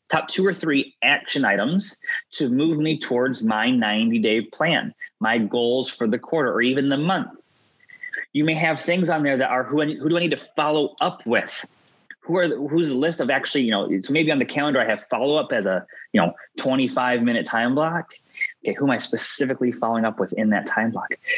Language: English